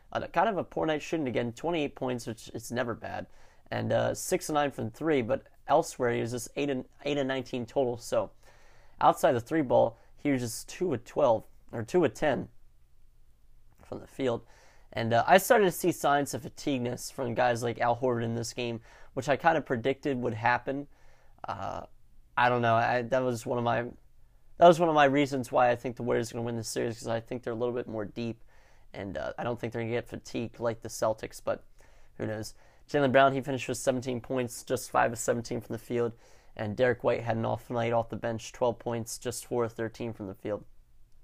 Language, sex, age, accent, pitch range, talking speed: English, male, 30-49, American, 115-135 Hz, 235 wpm